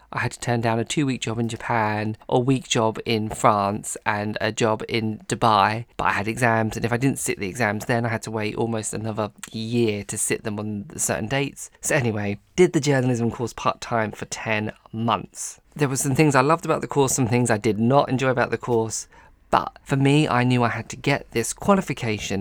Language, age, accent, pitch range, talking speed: English, 20-39, British, 110-130 Hz, 225 wpm